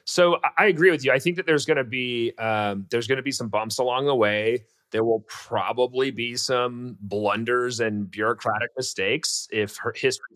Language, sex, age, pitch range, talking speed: English, male, 30-49, 110-140 Hz, 190 wpm